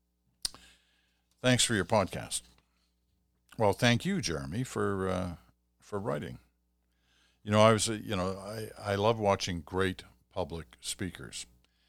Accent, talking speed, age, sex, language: American, 130 wpm, 60-79, male, English